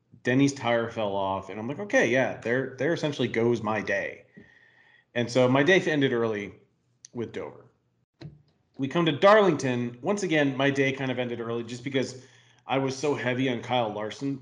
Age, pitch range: 40-59, 115-145 Hz